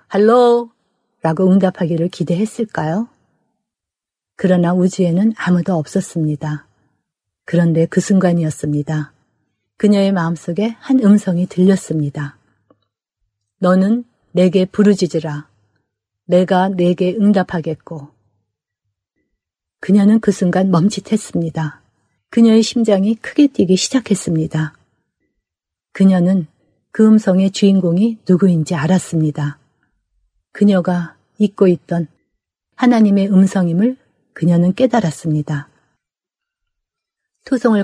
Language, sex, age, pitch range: Korean, female, 40-59, 160-205 Hz